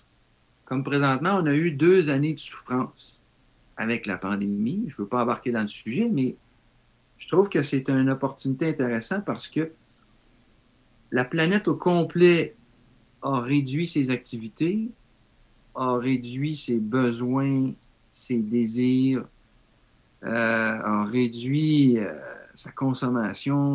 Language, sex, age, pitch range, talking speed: French, male, 60-79, 120-155 Hz, 125 wpm